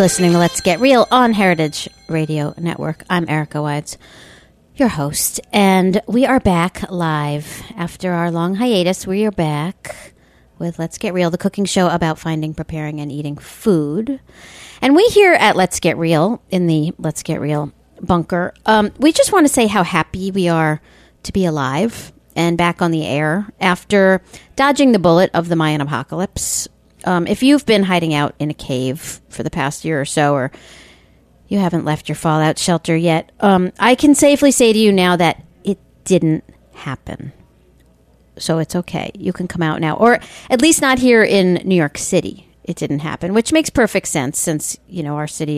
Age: 40-59